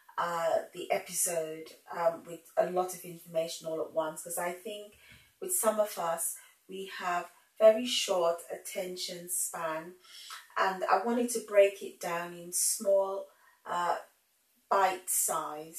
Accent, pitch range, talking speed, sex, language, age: British, 165-210 Hz, 140 wpm, female, English, 30-49